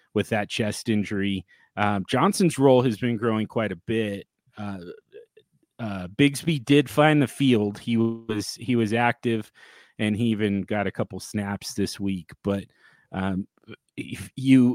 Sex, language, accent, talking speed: male, English, American, 155 wpm